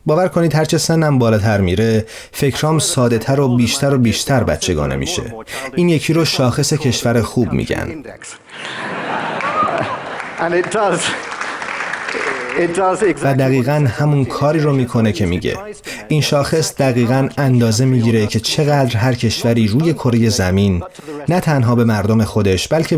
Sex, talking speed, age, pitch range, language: male, 130 wpm, 30-49, 110-145 Hz, Persian